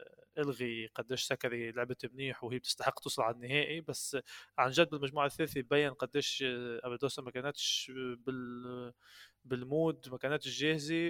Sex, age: male, 20-39